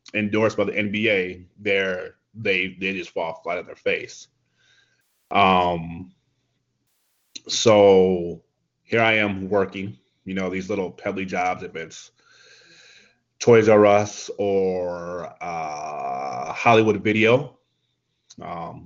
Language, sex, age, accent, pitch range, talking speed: English, male, 30-49, American, 95-110 Hz, 110 wpm